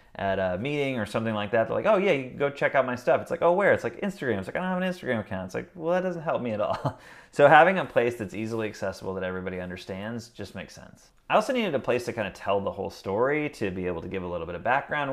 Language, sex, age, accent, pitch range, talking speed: English, male, 30-49, American, 100-135 Hz, 305 wpm